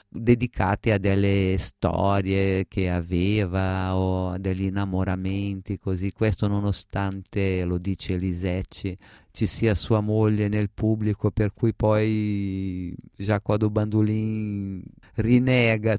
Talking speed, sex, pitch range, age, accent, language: 105 wpm, male, 90-105 Hz, 30-49, native, Italian